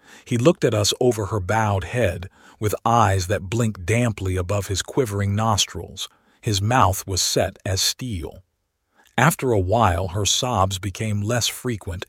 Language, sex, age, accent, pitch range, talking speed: English, male, 50-69, American, 100-125 Hz, 155 wpm